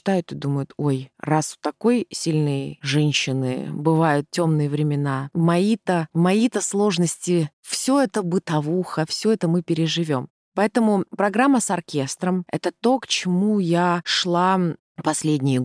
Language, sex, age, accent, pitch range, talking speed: Russian, female, 20-39, native, 150-185 Hz, 125 wpm